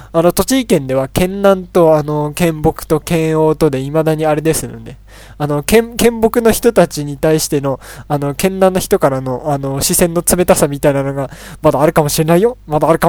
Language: Japanese